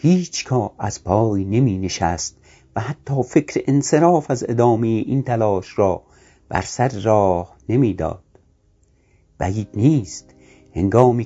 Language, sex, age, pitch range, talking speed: Persian, male, 60-79, 95-125 Hz, 125 wpm